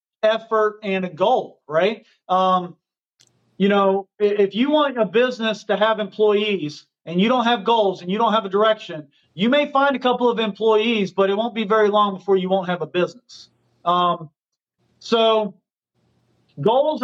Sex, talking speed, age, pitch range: male, 175 wpm, 40-59, 200-240 Hz